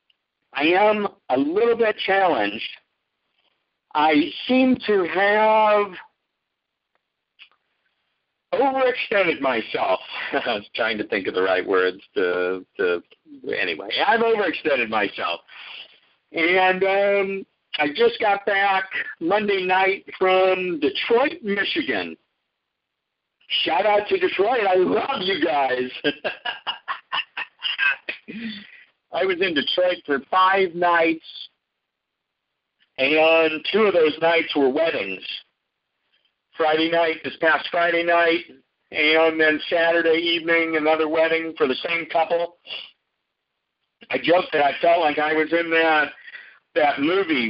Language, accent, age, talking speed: English, American, 60-79, 110 wpm